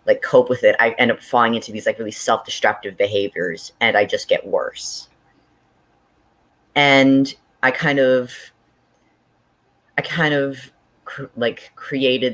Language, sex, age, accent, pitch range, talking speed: English, female, 20-39, American, 115-160 Hz, 140 wpm